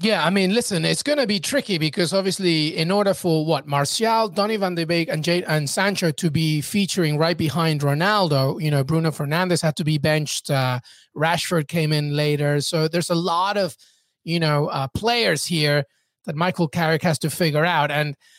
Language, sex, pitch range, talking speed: English, male, 155-195 Hz, 200 wpm